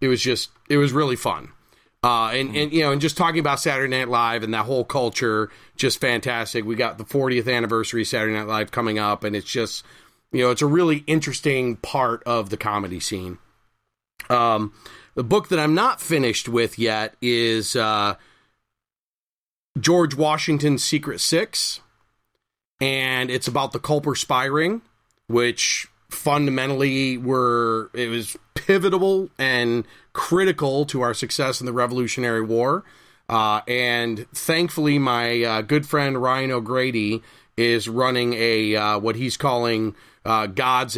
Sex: male